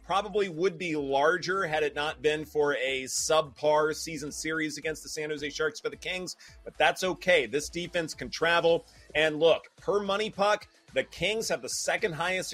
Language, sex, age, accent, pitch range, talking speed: English, male, 30-49, American, 140-175 Hz, 185 wpm